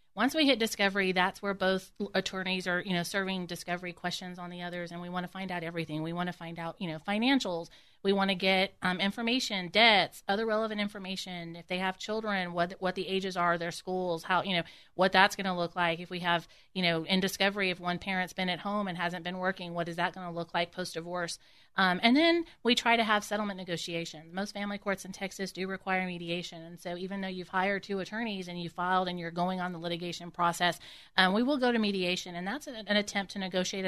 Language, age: English, 30-49